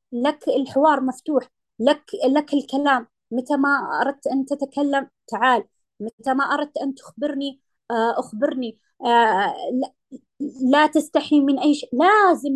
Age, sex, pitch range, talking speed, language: 20-39, female, 240-285 Hz, 115 wpm, Arabic